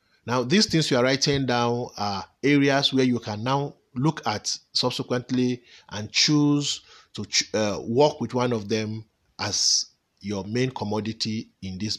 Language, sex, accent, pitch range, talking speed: English, male, Nigerian, 110-135 Hz, 160 wpm